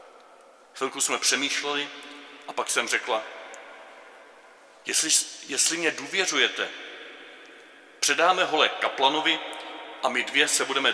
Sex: male